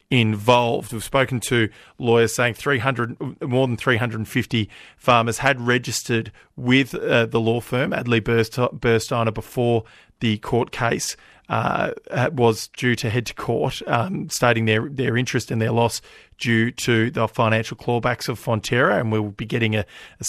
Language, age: English, 40-59